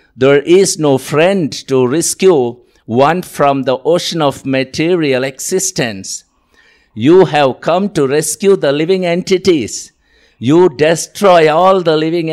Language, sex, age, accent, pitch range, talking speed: English, male, 50-69, Indian, 140-180 Hz, 125 wpm